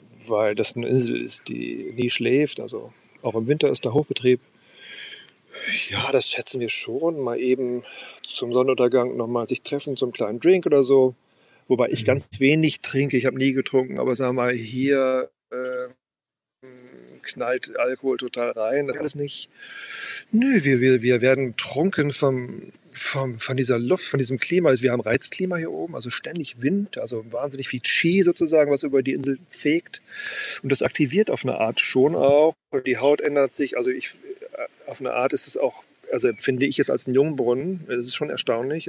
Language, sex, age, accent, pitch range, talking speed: German, male, 40-59, German, 125-195 Hz, 180 wpm